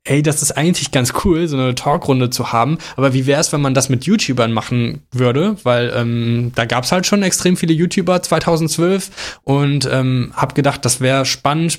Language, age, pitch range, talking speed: German, 10-29, 125-150 Hz, 205 wpm